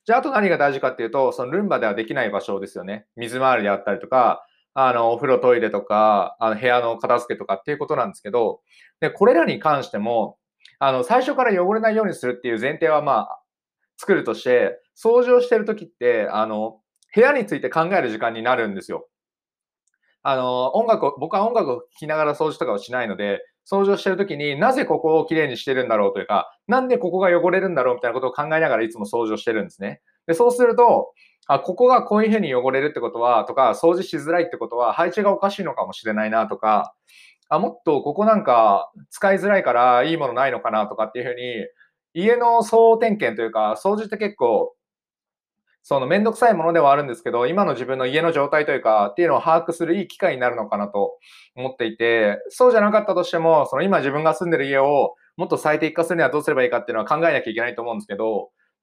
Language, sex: Japanese, male